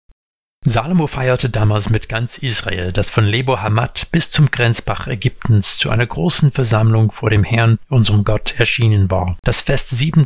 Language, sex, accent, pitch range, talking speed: German, male, German, 105-140 Hz, 165 wpm